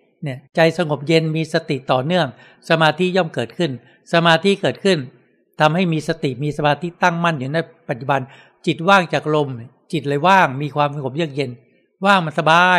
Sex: male